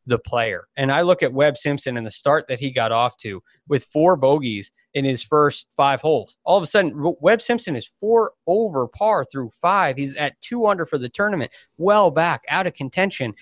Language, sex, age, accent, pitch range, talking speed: English, male, 30-49, American, 125-160 Hz, 215 wpm